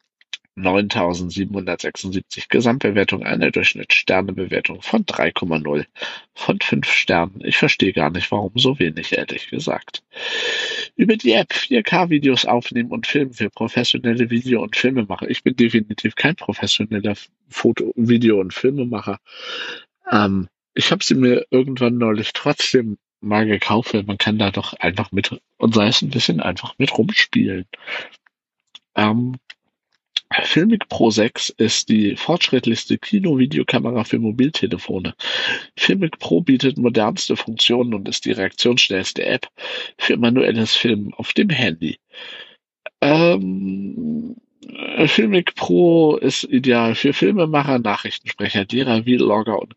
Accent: German